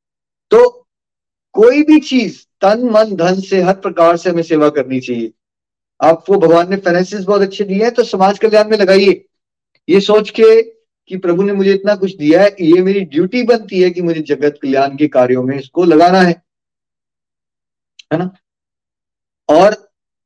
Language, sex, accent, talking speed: Hindi, male, native, 170 wpm